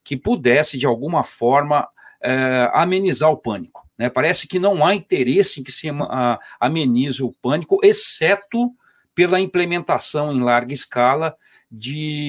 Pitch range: 130-205 Hz